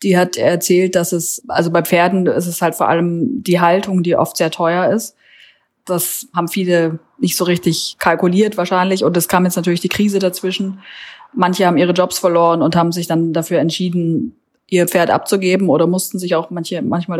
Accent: German